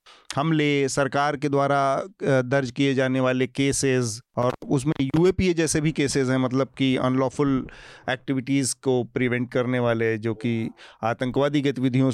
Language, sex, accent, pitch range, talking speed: Hindi, male, native, 125-155 Hz, 140 wpm